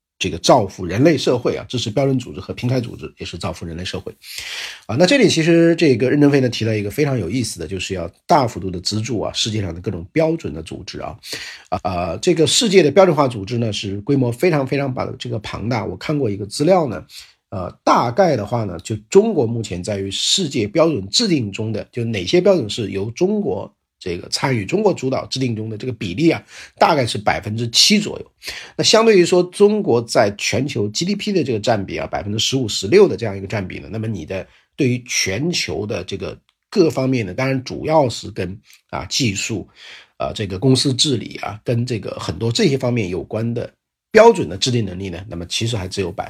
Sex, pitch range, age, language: male, 100-140 Hz, 50-69, Chinese